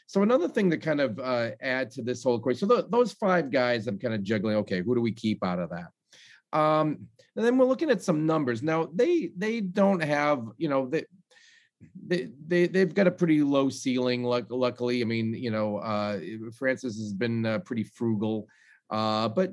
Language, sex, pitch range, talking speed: English, male, 115-165 Hz, 205 wpm